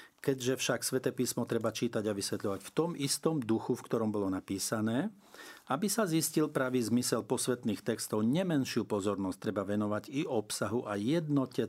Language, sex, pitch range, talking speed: Slovak, male, 100-125 Hz, 160 wpm